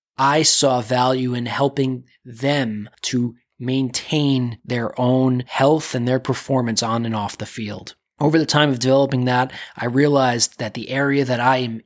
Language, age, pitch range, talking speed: English, 20-39, 120-140 Hz, 165 wpm